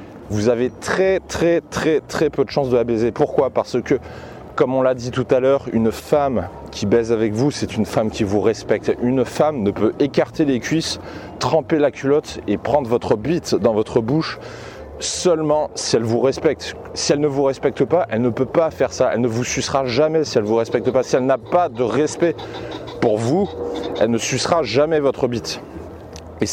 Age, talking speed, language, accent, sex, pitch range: 30-49, 215 wpm, French, French, male, 115-145 Hz